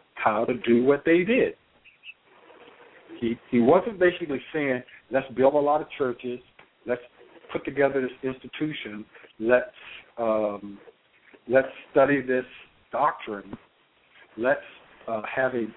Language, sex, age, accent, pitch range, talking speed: English, male, 60-79, American, 120-165 Hz, 120 wpm